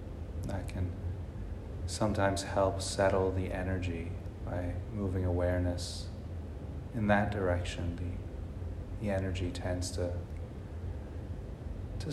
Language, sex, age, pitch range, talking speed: English, male, 30-49, 90-100 Hz, 95 wpm